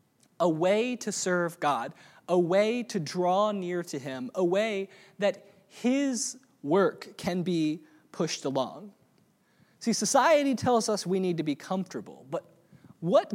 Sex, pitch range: male, 155-235 Hz